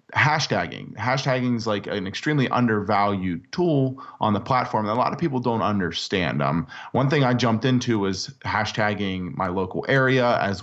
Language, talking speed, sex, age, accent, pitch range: English, 170 wpm, male, 30-49, American, 95-125 Hz